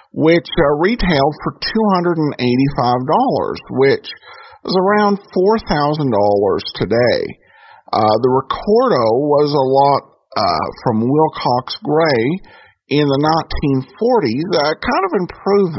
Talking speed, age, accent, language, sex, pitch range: 105 wpm, 50-69, American, English, male, 125-170 Hz